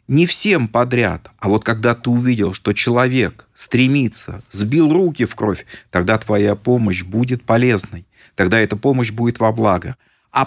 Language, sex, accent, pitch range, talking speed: Russian, male, native, 105-145 Hz, 155 wpm